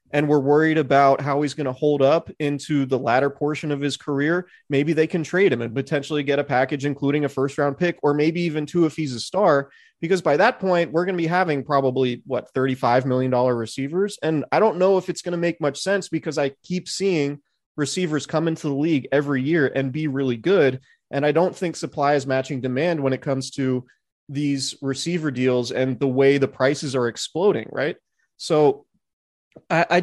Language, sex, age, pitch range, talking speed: English, male, 30-49, 130-155 Hz, 210 wpm